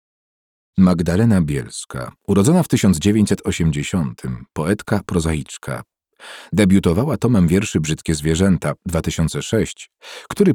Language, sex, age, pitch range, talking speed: English, male, 40-59, 80-105 Hz, 80 wpm